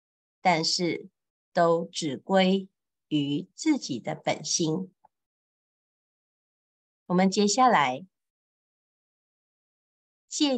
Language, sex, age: Chinese, female, 50-69